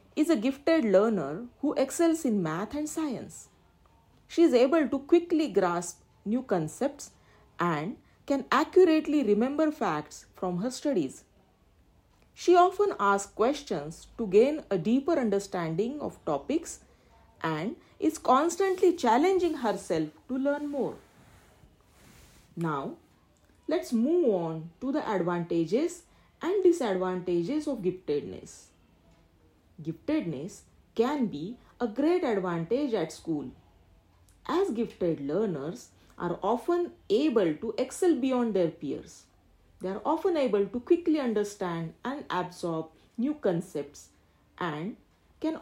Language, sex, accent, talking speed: English, female, Indian, 115 wpm